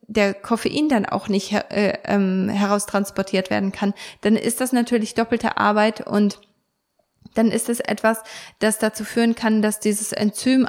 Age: 20-39